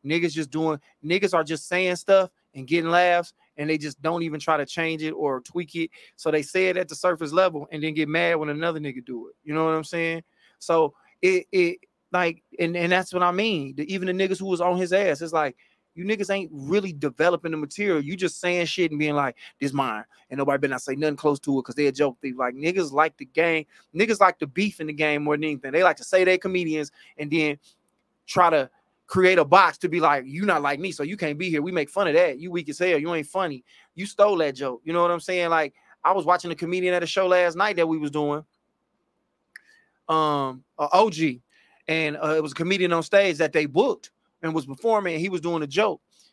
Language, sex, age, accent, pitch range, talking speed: English, male, 20-39, American, 150-185 Hz, 250 wpm